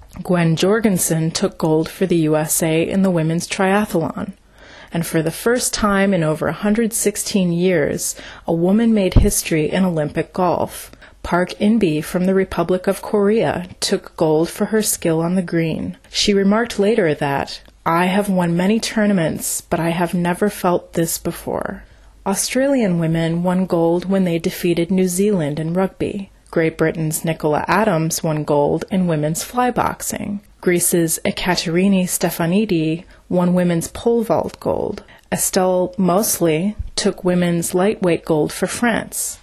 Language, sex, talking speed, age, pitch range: English, female, 145 wpm, 30-49, 165-200 Hz